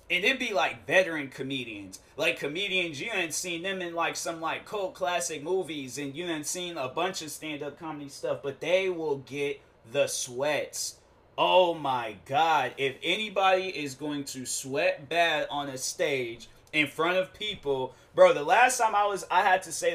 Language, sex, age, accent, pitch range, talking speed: English, male, 20-39, American, 130-170 Hz, 185 wpm